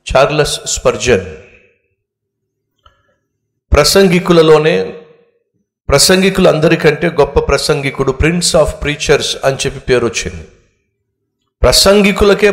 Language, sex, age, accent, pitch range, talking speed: Telugu, male, 50-69, native, 125-170 Hz, 70 wpm